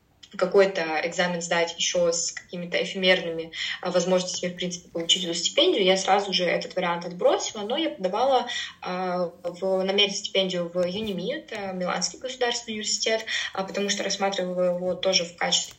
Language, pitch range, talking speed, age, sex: Russian, 175-200 Hz, 150 wpm, 20-39, female